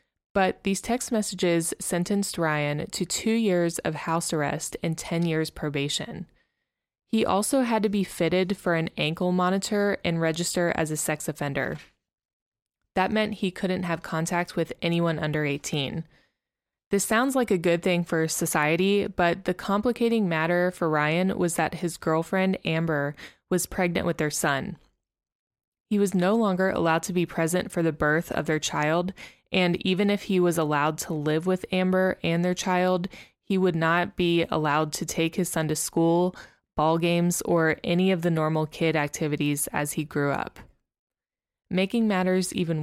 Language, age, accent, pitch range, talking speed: English, 20-39, American, 155-185 Hz, 170 wpm